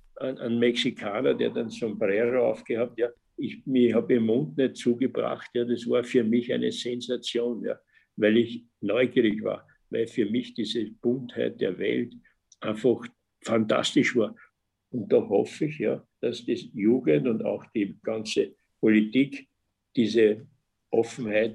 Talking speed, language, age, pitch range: 145 wpm, German, 60-79, 105-120 Hz